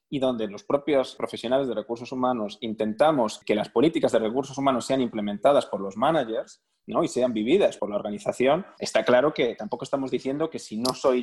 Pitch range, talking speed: 110-140 Hz, 200 wpm